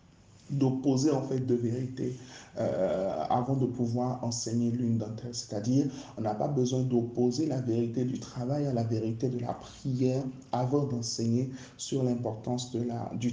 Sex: male